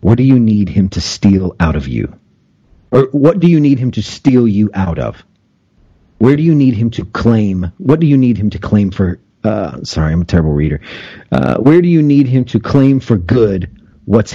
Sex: male